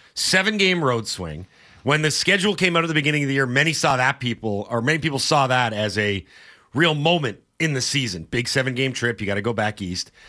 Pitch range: 115-155 Hz